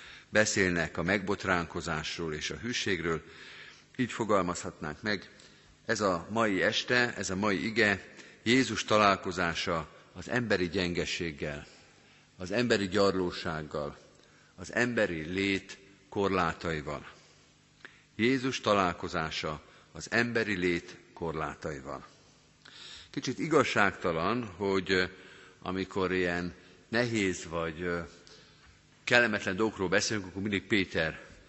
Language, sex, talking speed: Hungarian, male, 90 wpm